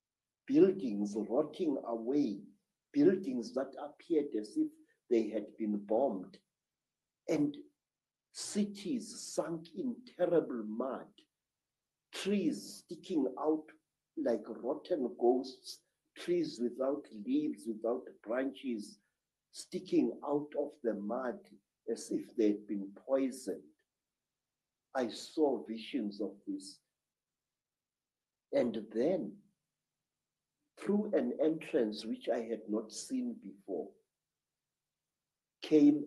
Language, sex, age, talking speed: English, male, 60-79, 95 wpm